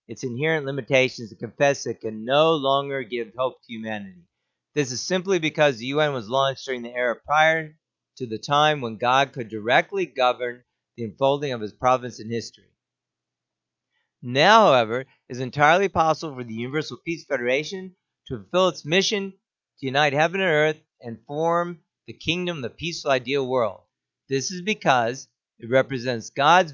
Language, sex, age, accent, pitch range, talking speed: English, male, 50-69, American, 125-170 Hz, 170 wpm